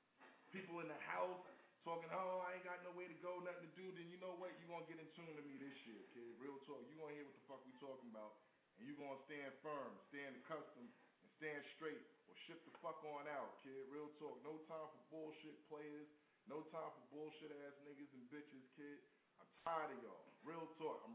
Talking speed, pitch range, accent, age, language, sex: 235 wpm, 150-175 Hz, American, 20-39, English, male